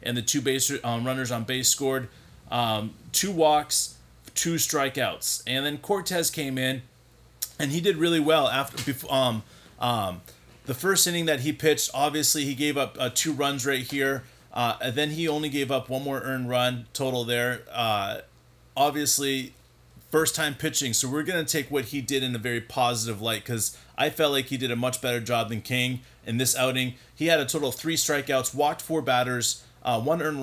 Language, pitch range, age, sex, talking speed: English, 125-150 Hz, 30-49, male, 200 wpm